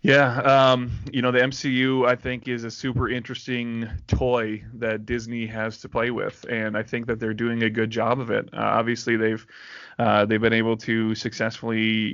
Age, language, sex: 20-39, English, male